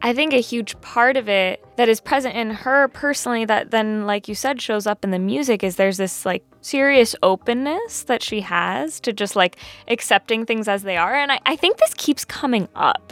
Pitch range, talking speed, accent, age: 185-240 Hz, 220 wpm, American, 10-29